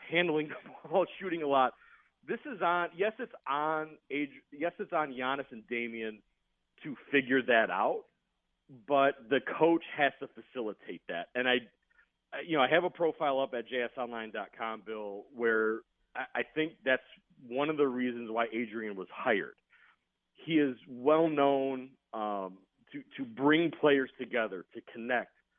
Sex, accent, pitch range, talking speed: male, American, 125-160 Hz, 155 wpm